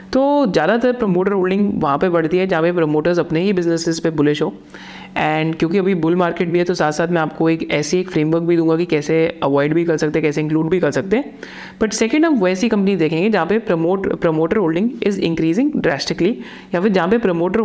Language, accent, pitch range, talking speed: Hindi, native, 165-220 Hz, 230 wpm